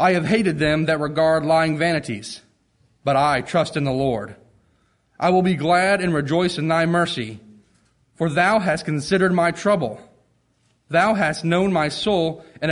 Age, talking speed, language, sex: 30-49, 165 wpm, English, male